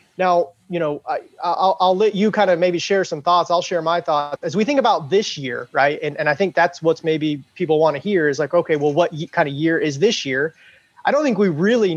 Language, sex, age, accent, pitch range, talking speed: English, male, 30-49, American, 145-185 Hz, 260 wpm